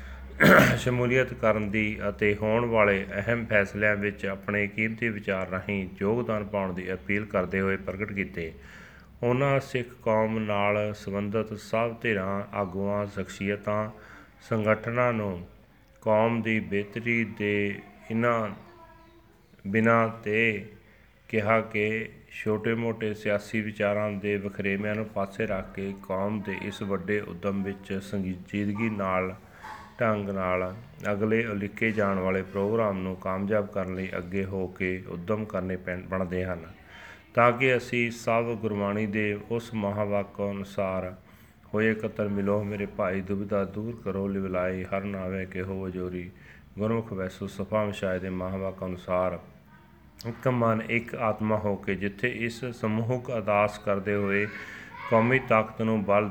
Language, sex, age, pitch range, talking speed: Punjabi, male, 30-49, 95-110 Hz, 130 wpm